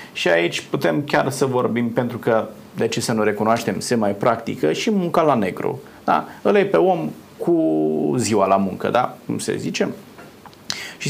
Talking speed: 180 wpm